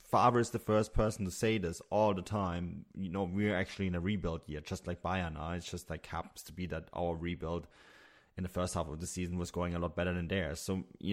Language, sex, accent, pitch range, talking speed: English, male, German, 85-100 Hz, 260 wpm